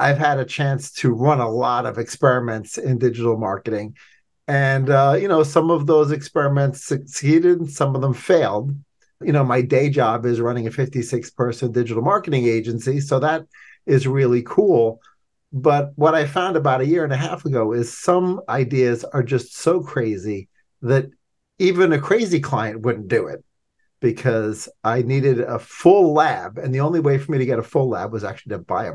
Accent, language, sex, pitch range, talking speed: American, English, male, 120-150 Hz, 195 wpm